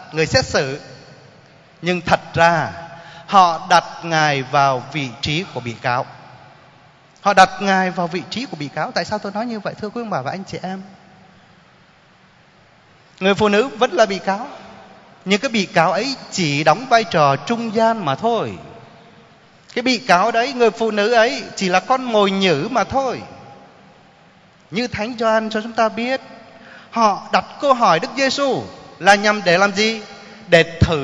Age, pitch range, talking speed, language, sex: 20-39, 150-215 Hz, 180 wpm, Vietnamese, male